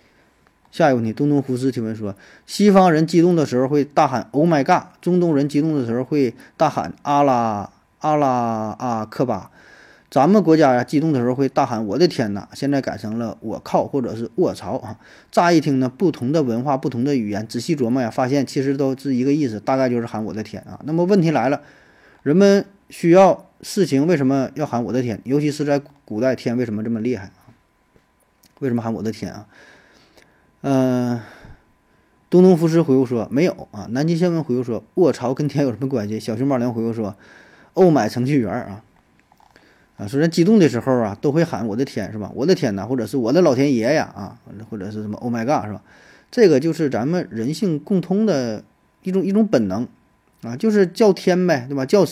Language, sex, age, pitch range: Chinese, male, 20-39, 115-155 Hz